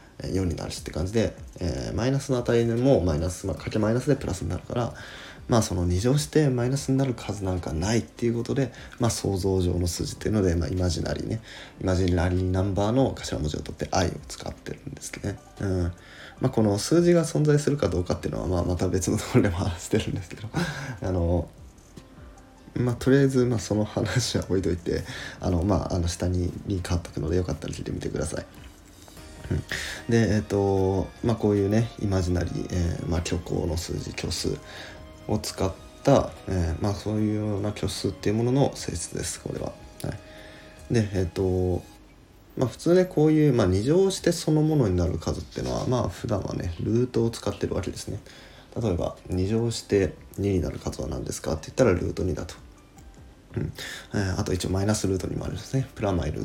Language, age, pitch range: Japanese, 20-39, 90-115 Hz